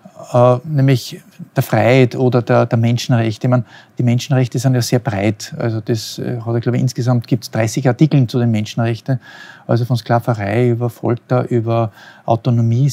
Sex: male